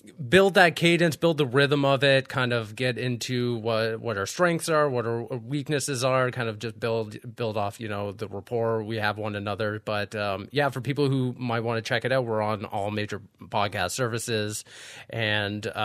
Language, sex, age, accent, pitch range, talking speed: English, male, 30-49, American, 105-130 Hz, 205 wpm